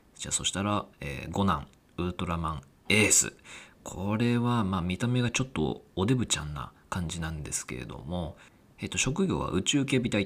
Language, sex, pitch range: Japanese, male, 80-130 Hz